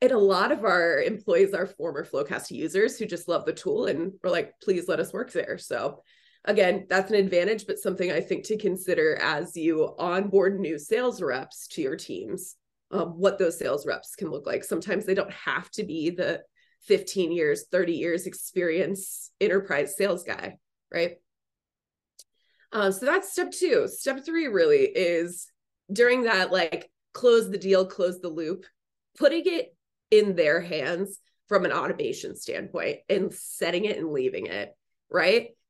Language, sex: English, female